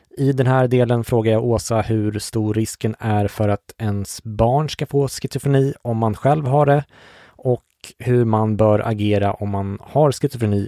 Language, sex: English, male